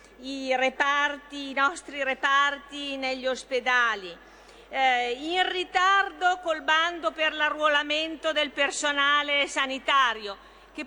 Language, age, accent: Italian, 40-59, native